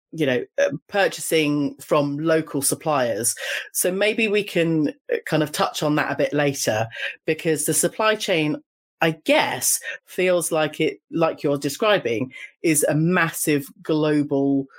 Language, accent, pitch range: English, British, 145-195 Hz